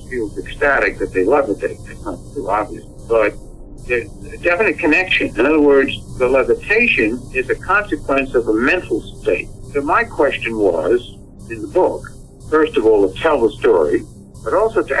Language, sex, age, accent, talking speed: English, male, 60-79, American, 170 wpm